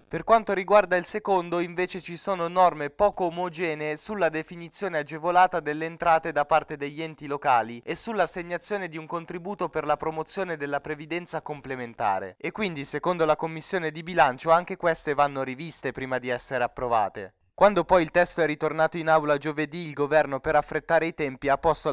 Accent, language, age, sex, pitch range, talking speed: native, Italian, 20-39, male, 145-175 Hz, 175 wpm